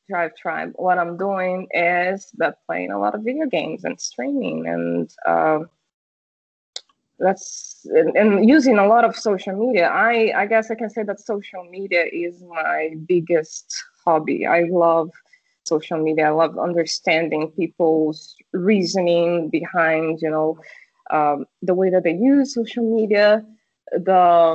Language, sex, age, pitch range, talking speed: English, female, 20-39, 165-215 Hz, 140 wpm